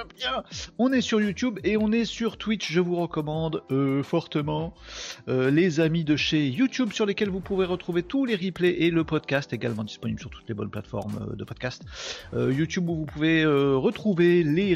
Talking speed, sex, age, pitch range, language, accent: 205 wpm, male, 40-59, 125-180 Hz, French, French